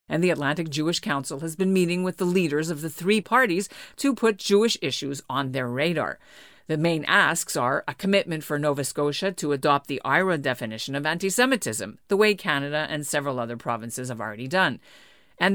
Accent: American